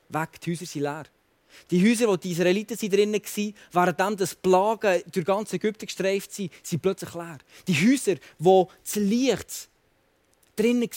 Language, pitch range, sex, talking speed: German, 180-220 Hz, male, 165 wpm